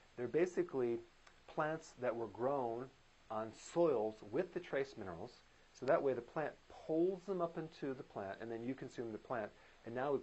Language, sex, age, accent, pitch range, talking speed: English, male, 40-59, American, 105-130 Hz, 190 wpm